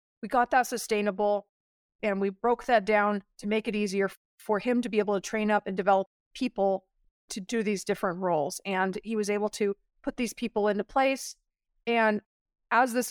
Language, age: English, 30-49